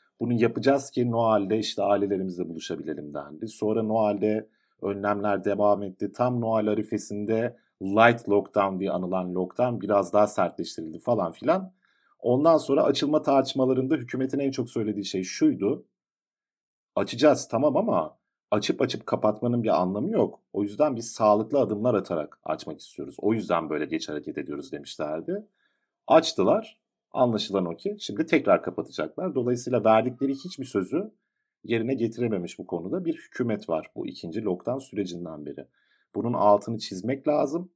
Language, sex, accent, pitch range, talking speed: Turkish, male, native, 100-130 Hz, 140 wpm